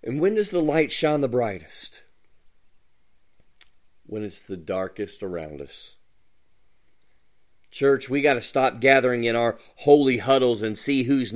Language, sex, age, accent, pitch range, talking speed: English, male, 40-59, American, 130-175 Hz, 145 wpm